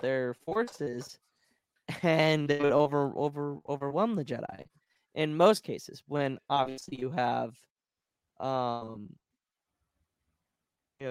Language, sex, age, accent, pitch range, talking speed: English, male, 20-39, American, 130-155 Hz, 105 wpm